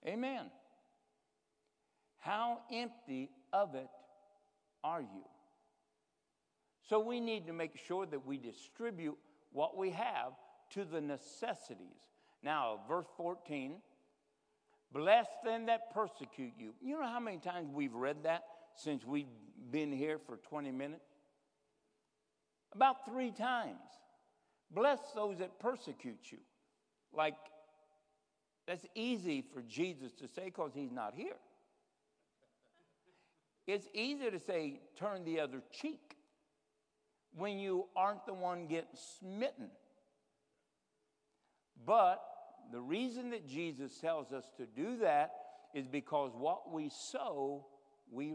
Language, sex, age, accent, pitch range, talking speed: English, male, 60-79, American, 150-235 Hz, 120 wpm